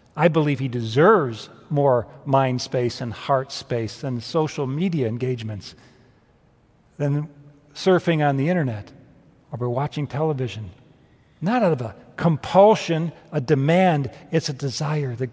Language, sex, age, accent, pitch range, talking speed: English, male, 50-69, American, 130-170 Hz, 130 wpm